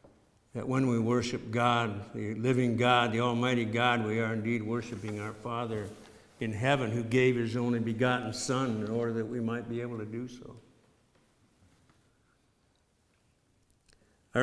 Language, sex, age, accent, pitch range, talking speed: English, male, 60-79, American, 115-130 Hz, 150 wpm